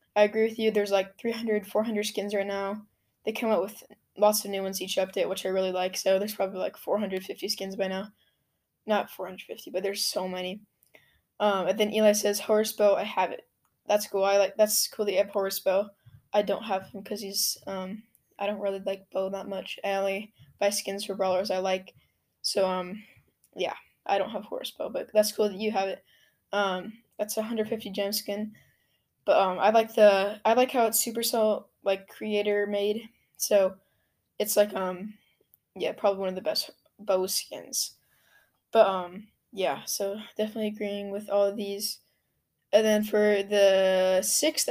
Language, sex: English, female